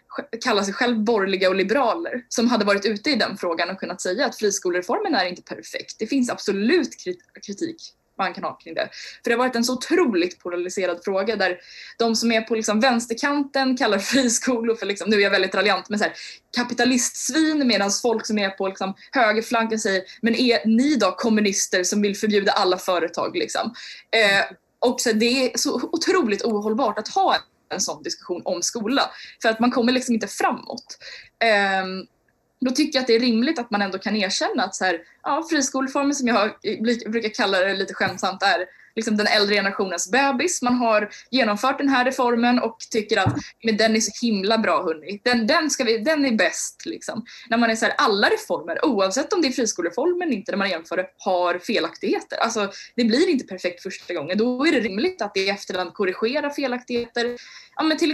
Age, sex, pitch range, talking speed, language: 20-39, female, 195-255 Hz, 195 wpm, Swedish